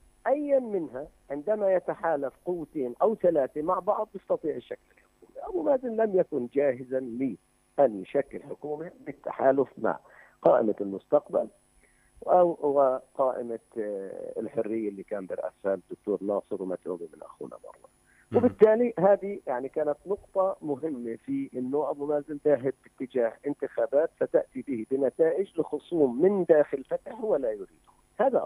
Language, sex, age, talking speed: Arabic, male, 50-69, 125 wpm